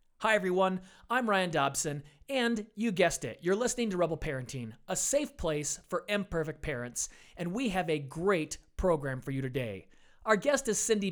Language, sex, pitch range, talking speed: English, male, 155-220 Hz, 180 wpm